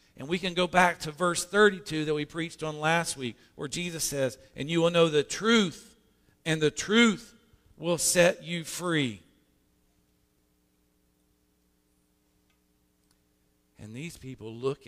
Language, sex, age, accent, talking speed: English, male, 50-69, American, 135 wpm